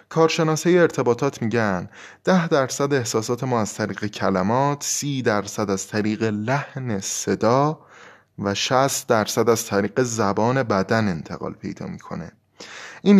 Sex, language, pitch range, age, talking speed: male, Persian, 105-135 Hz, 20-39, 125 wpm